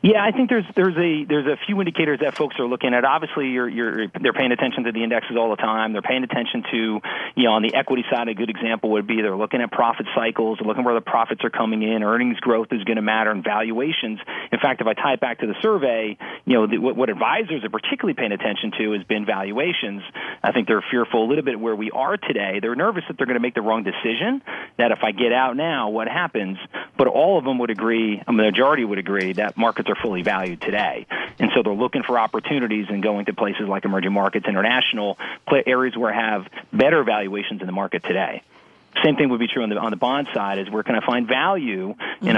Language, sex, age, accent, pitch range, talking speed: English, male, 40-59, American, 105-130 Hz, 250 wpm